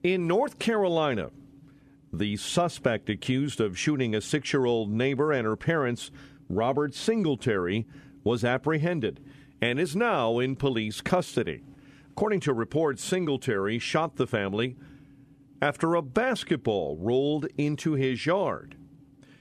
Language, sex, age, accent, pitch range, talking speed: English, male, 50-69, American, 120-150 Hz, 120 wpm